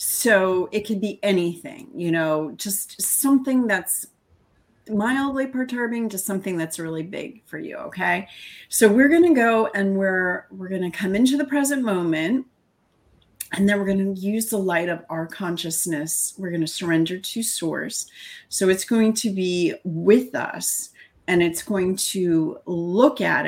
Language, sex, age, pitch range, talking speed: English, female, 30-49, 155-205 Hz, 165 wpm